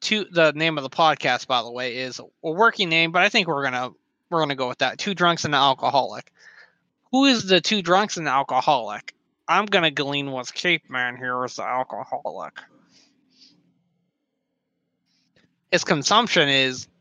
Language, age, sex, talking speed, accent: English, 20-39, male, 175 wpm, American